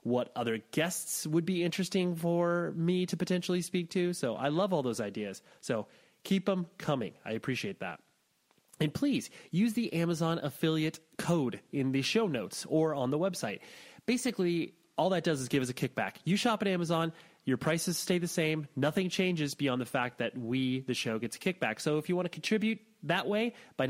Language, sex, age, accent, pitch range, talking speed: English, male, 30-49, American, 130-180 Hz, 200 wpm